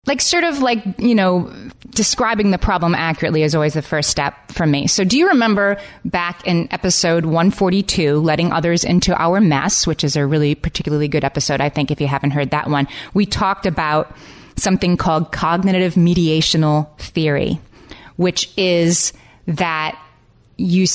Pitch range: 155-185 Hz